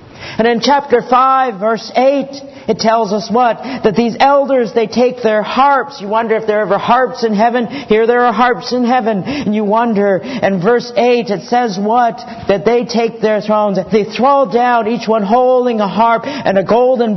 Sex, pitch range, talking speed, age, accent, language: male, 210-250 Hz, 200 wpm, 50-69, American, English